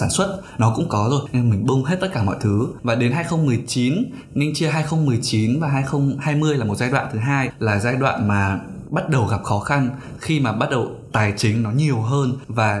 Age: 20-39